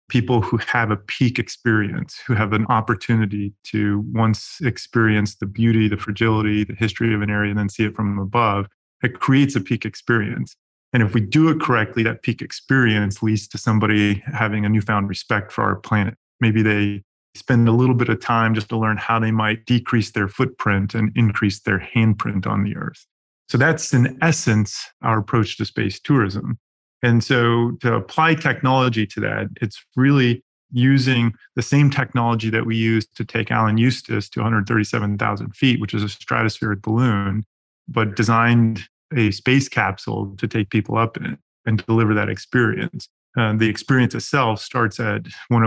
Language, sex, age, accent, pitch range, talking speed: English, male, 30-49, American, 105-120 Hz, 175 wpm